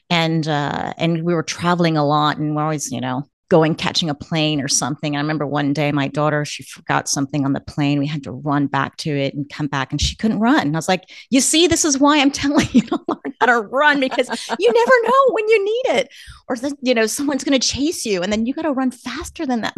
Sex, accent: female, American